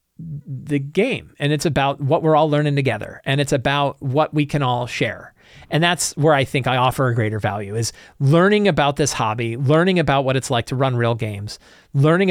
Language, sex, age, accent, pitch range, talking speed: English, male, 40-59, American, 125-155 Hz, 210 wpm